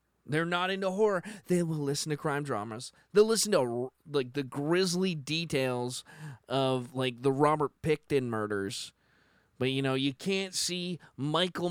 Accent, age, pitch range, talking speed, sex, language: American, 20-39, 130-175 Hz, 155 wpm, male, English